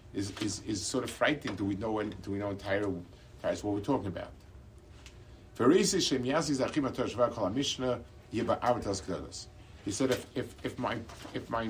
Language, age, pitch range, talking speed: English, 50-69, 95-125 Hz, 135 wpm